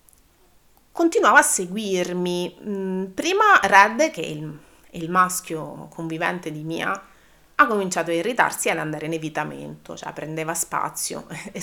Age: 30-49